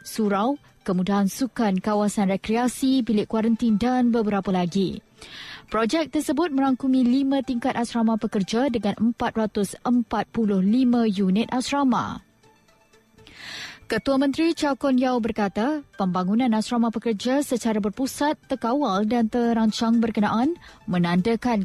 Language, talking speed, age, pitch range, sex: Malay, 105 wpm, 20-39, 215-255 Hz, female